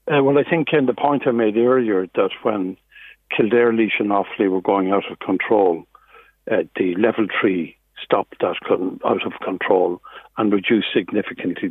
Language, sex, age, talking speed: English, male, 60-79, 175 wpm